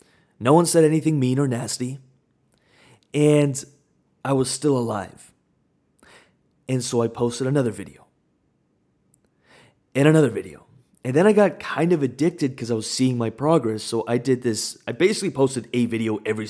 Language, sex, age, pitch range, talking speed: English, male, 20-39, 115-140 Hz, 160 wpm